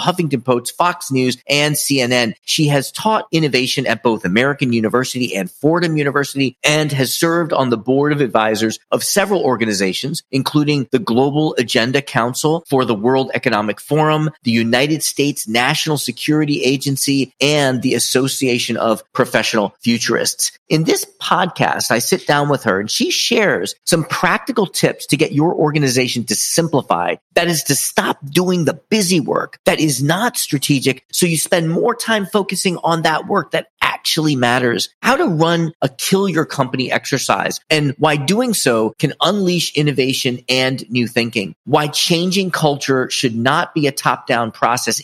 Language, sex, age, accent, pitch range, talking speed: English, male, 40-59, American, 125-160 Hz, 160 wpm